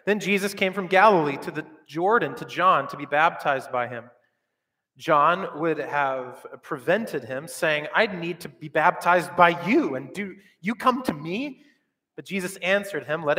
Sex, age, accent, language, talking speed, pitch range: male, 30-49, American, English, 175 wpm, 145-195 Hz